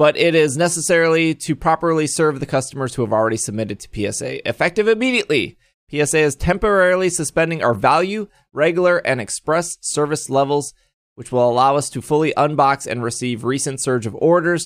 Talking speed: 170 wpm